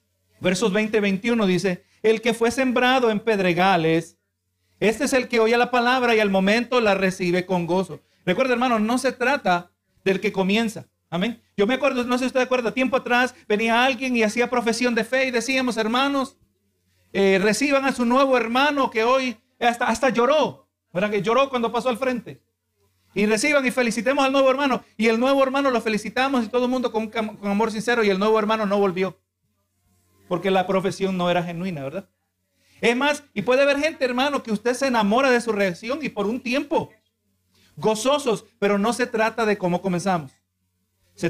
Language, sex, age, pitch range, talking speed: Spanish, male, 50-69, 185-245 Hz, 190 wpm